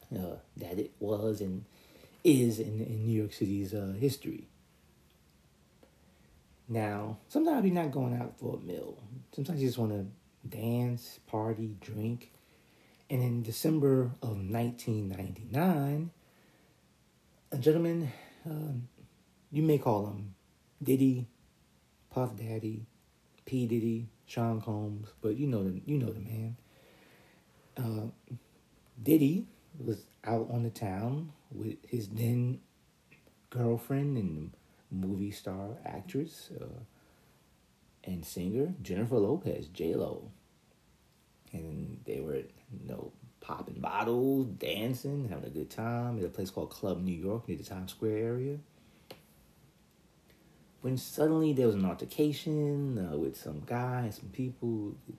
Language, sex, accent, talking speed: English, male, American, 125 wpm